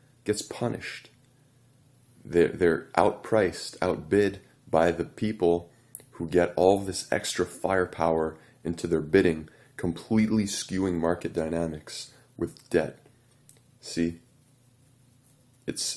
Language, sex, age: English, male, 20-39